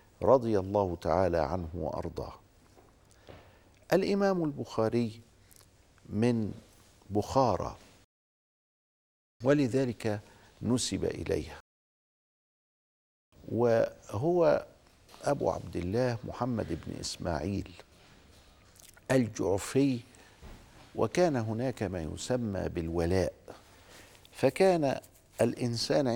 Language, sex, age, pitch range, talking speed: Arabic, male, 50-69, 95-125 Hz, 60 wpm